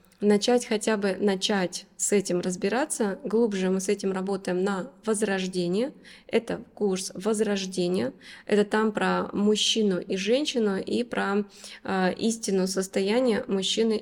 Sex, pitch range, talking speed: female, 190-225 Hz, 125 wpm